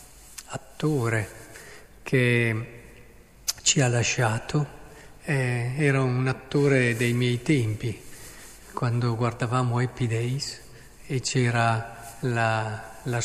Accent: native